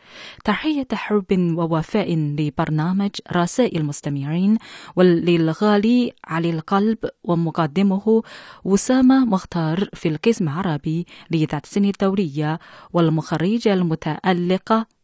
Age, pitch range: 20-39, 165-230 Hz